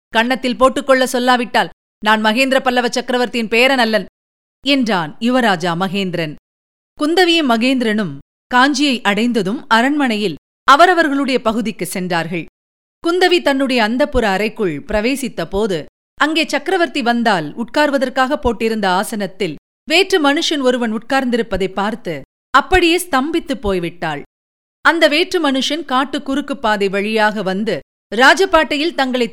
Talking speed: 100 wpm